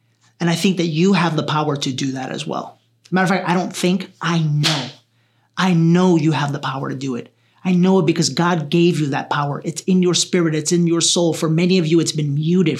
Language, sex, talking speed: English, male, 255 wpm